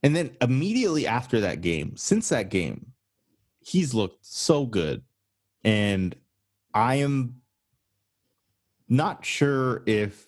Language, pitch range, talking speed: English, 90-120 Hz, 110 wpm